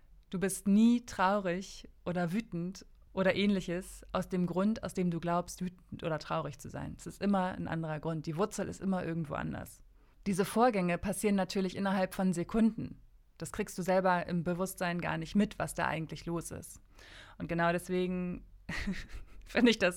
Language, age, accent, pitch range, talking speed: German, 20-39, German, 170-200 Hz, 175 wpm